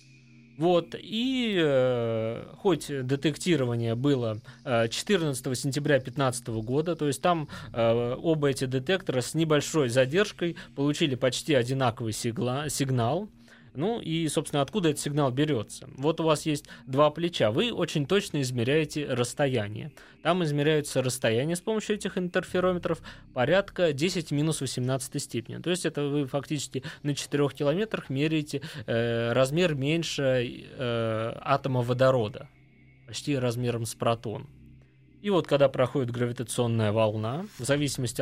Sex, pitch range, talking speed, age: male, 120-160 Hz, 125 wpm, 20-39